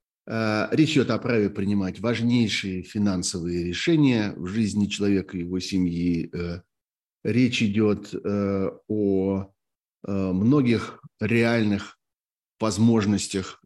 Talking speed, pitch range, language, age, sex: 90 wpm, 95-115 Hz, Russian, 50-69, male